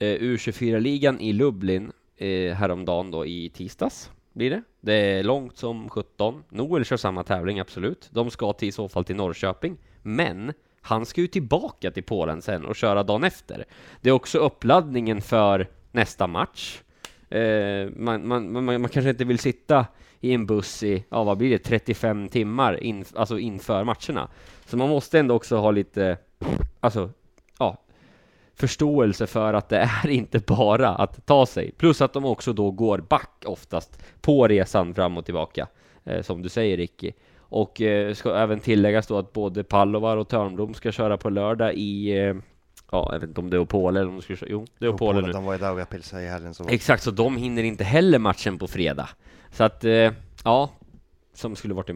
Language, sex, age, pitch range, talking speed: Swedish, male, 20-39, 95-120 Hz, 180 wpm